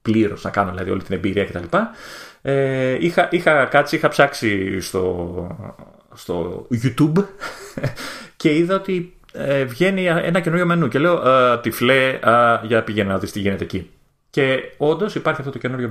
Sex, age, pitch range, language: male, 30-49, 110-150 Hz, Greek